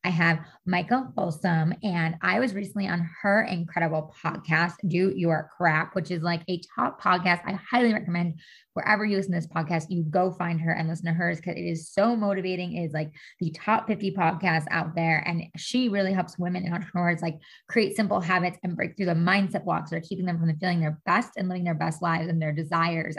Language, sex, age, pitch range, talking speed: English, female, 20-39, 170-200 Hz, 220 wpm